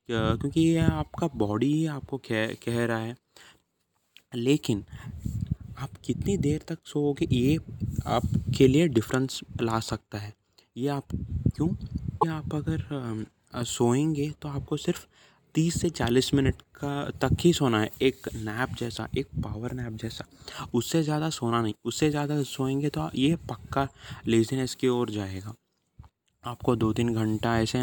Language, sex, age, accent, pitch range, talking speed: Hindi, male, 20-39, native, 110-145 Hz, 140 wpm